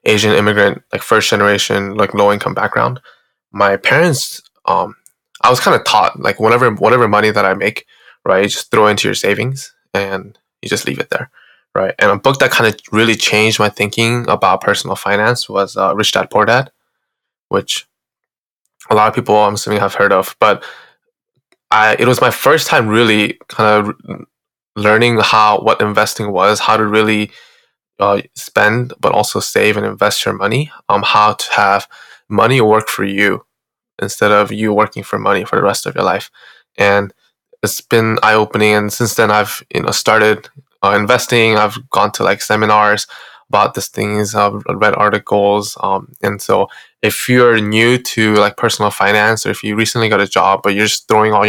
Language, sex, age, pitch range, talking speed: English, male, 20-39, 100-110 Hz, 190 wpm